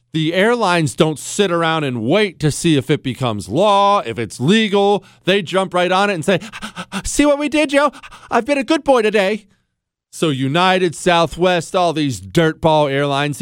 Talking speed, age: 185 wpm, 40-59